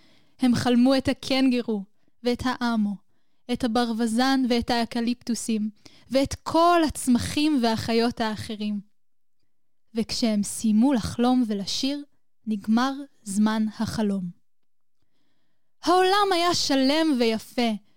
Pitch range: 225-290 Hz